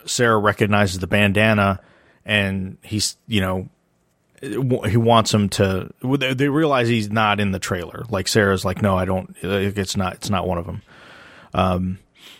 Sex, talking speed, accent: male, 160 wpm, American